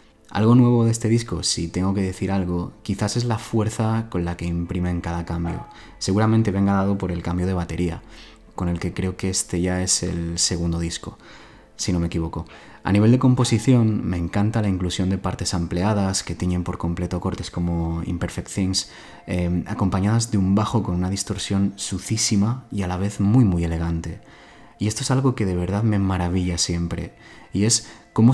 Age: 20-39